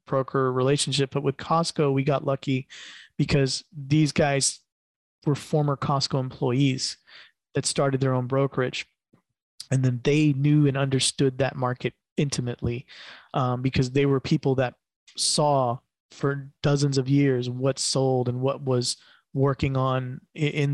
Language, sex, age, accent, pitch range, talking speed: English, male, 20-39, American, 130-145 Hz, 140 wpm